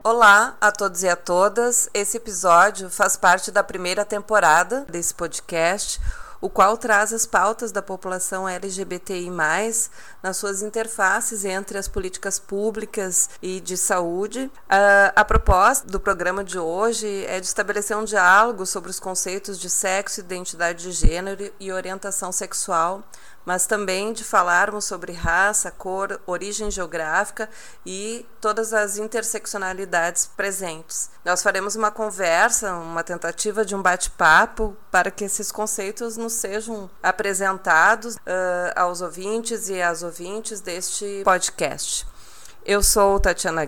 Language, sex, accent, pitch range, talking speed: Portuguese, female, Brazilian, 180-210 Hz, 130 wpm